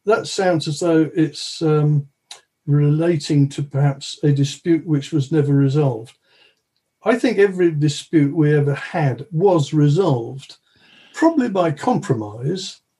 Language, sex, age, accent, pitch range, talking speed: English, male, 50-69, British, 140-180 Hz, 125 wpm